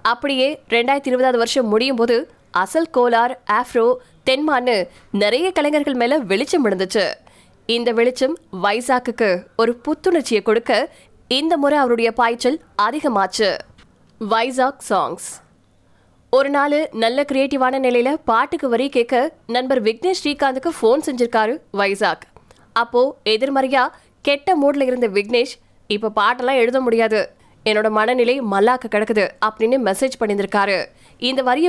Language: Tamil